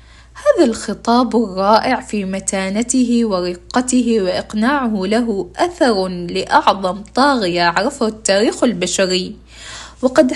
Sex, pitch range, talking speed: female, 200-255 Hz, 85 wpm